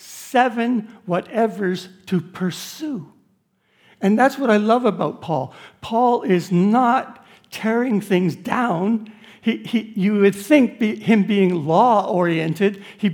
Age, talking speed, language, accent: 60-79, 110 wpm, English, American